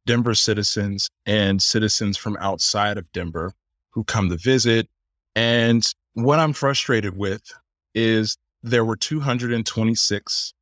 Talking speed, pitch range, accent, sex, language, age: 120 wpm, 95-120 Hz, American, male, English, 30-49